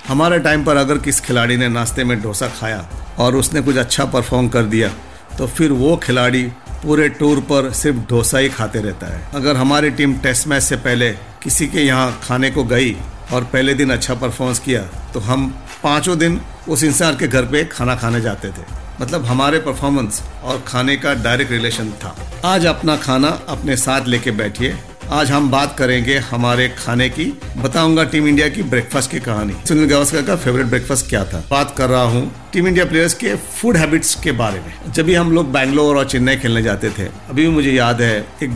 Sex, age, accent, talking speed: male, 50-69, native, 200 wpm